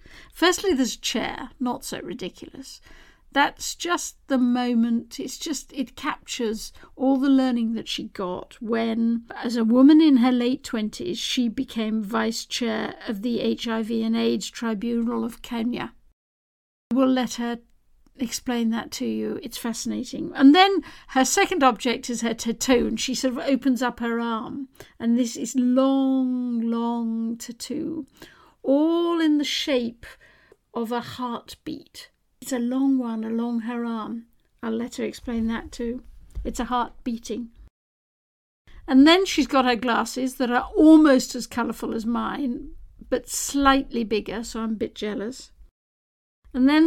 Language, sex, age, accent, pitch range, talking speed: English, female, 50-69, British, 230-270 Hz, 150 wpm